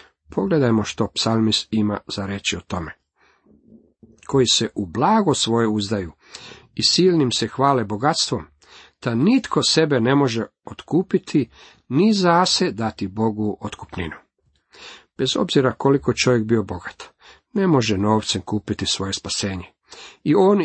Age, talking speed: 50-69, 130 wpm